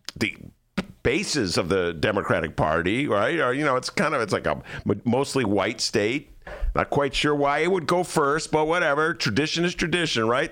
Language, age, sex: English, 50-69, male